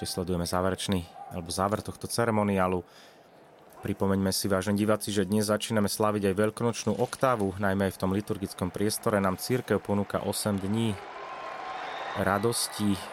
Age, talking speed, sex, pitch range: 30-49, 135 wpm, male, 95-110 Hz